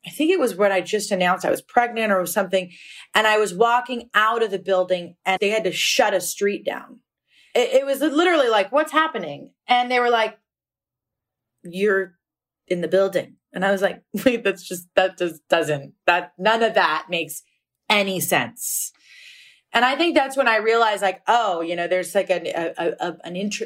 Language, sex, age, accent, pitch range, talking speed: English, female, 30-49, American, 175-245 Hz, 200 wpm